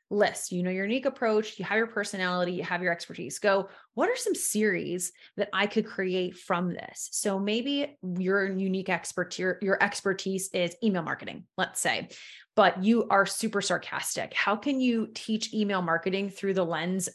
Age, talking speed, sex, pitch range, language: 20-39, 180 wpm, female, 180-220 Hz, English